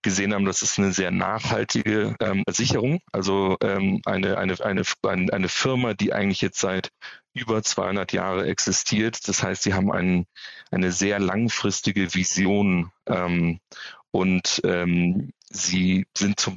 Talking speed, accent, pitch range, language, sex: 130 wpm, German, 95-105 Hz, German, male